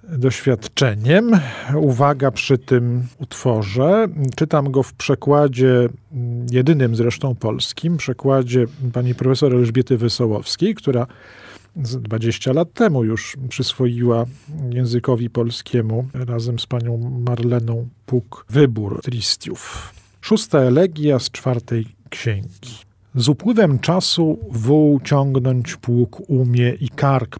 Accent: native